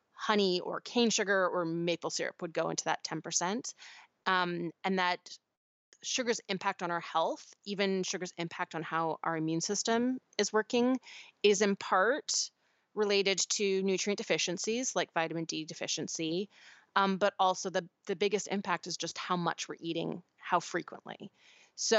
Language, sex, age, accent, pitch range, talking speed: English, female, 30-49, American, 170-205 Hz, 155 wpm